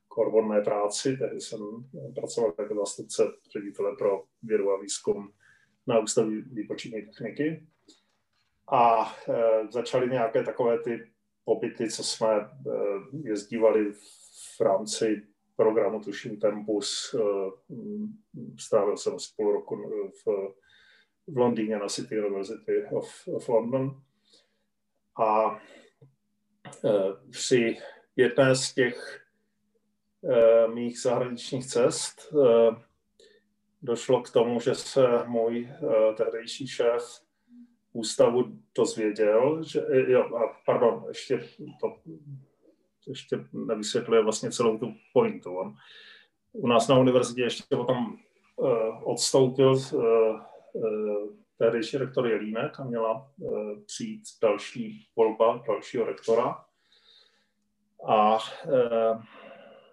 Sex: male